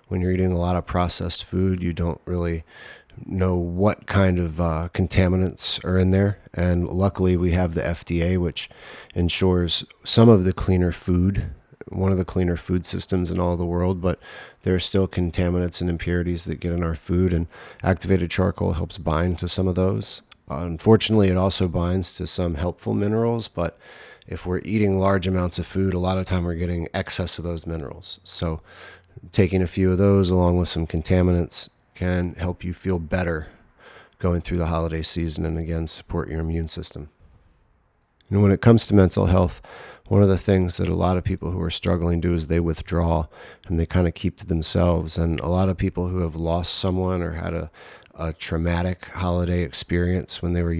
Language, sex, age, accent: English, male, 30-49, American